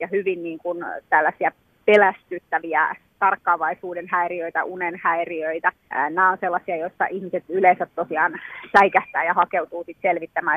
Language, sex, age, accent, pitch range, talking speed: Finnish, female, 30-49, native, 170-205 Hz, 120 wpm